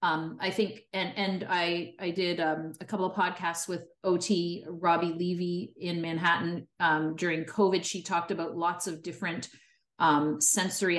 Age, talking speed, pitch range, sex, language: 30-49, 165 wpm, 160-185 Hz, female, English